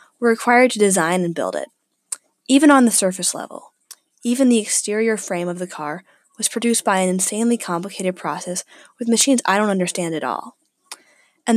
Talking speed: 170 wpm